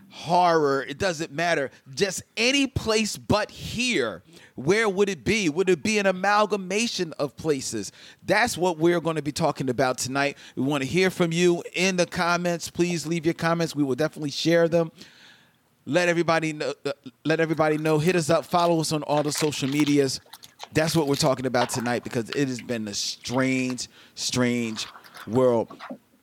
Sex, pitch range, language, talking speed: male, 120-170 Hz, English, 175 wpm